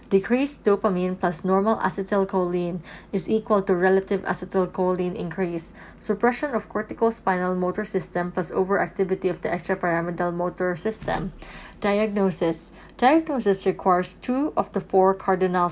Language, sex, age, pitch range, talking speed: English, female, 20-39, 180-200 Hz, 120 wpm